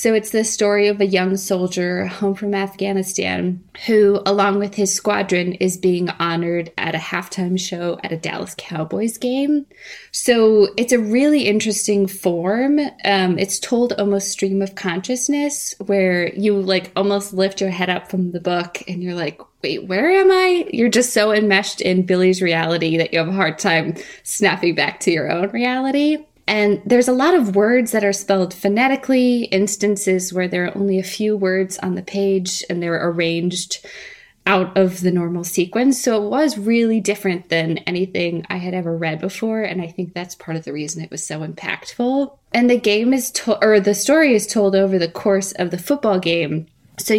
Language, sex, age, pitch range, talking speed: English, female, 20-39, 180-215 Hz, 190 wpm